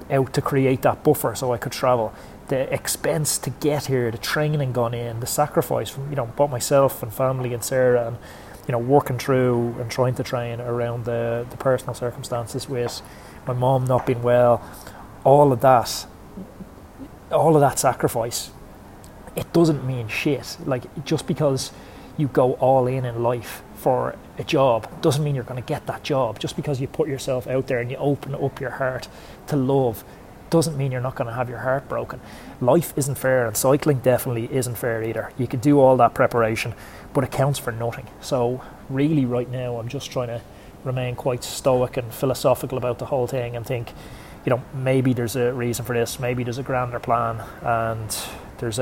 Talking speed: 195 wpm